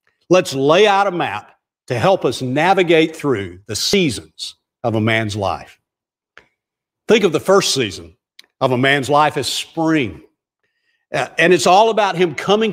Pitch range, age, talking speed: 140-190 Hz, 50-69, 155 wpm